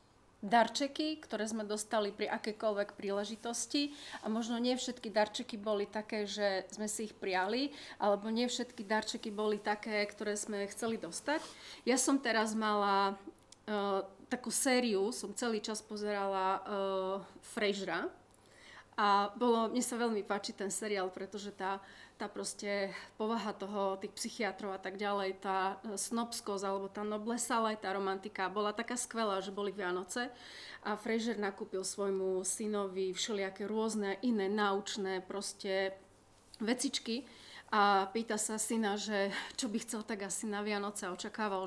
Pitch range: 200-235 Hz